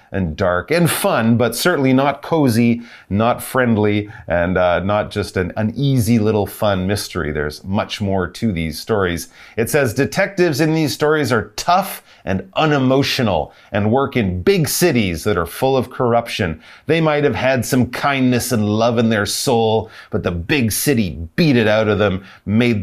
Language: Chinese